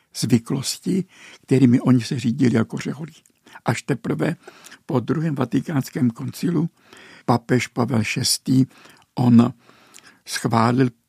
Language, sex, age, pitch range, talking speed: Czech, male, 60-79, 115-135 Hz, 95 wpm